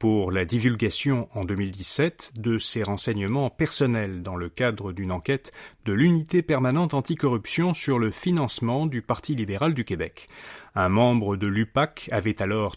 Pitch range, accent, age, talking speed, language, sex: 105-135 Hz, French, 40-59, 150 wpm, French, male